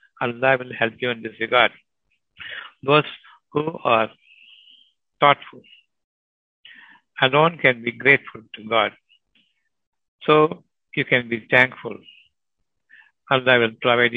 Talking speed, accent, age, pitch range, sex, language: 120 wpm, native, 60-79, 115-135 Hz, male, Tamil